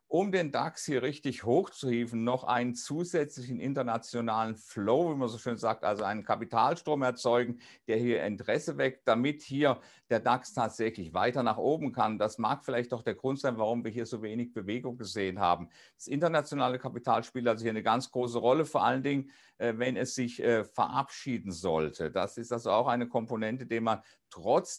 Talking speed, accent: 185 wpm, German